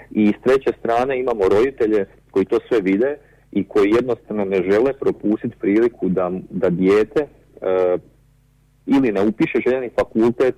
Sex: male